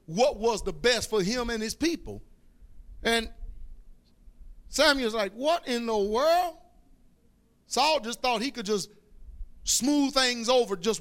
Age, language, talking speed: 40-59, English, 140 wpm